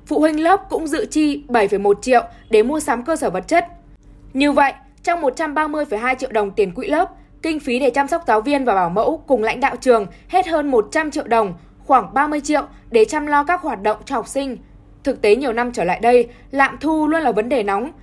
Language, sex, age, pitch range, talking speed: Vietnamese, female, 10-29, 235-290 Hz, 235 wpm